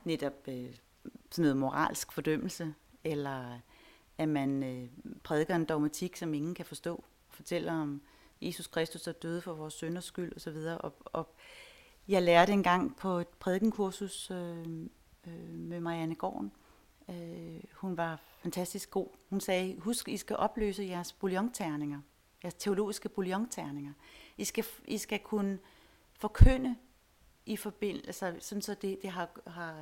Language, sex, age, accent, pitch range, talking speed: Danish, female, 40-59, native, 160-205 Hz, 145 wpm